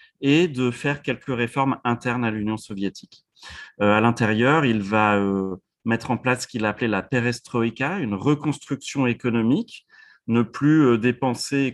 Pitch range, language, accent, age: 105-135 Hz, French, French, 30-49